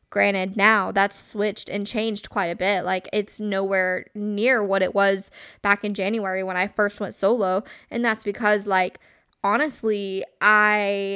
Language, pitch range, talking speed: English, 195-230 Hz, 160 wpm